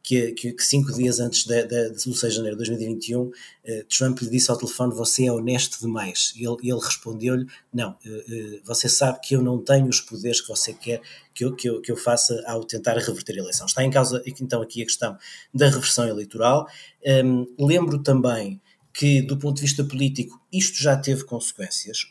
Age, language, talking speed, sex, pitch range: 20-39, Portuguese, 210 wpm, male, 115-135 Hz